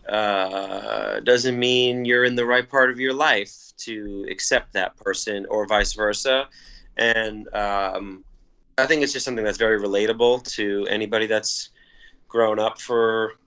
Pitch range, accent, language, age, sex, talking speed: 100-125 Hz, American, English, 30-49, male, 150 wpm